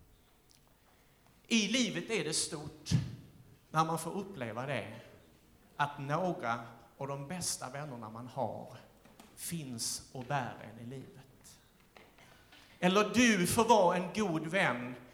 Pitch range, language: 140-200 Hz, Swedish